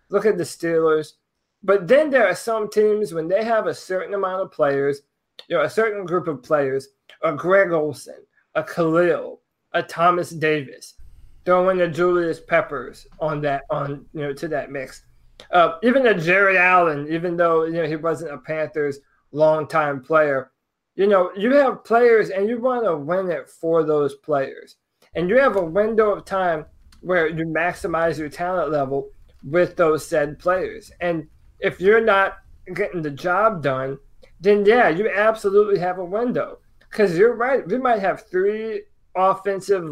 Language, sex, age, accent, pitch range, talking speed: English, male, 20-39, American, 150-195 Hz, 175 wpm